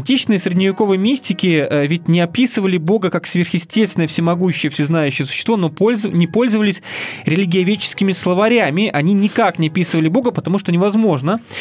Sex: male